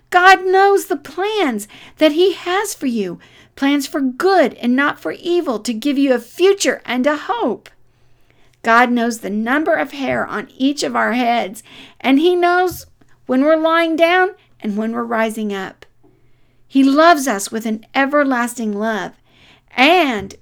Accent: American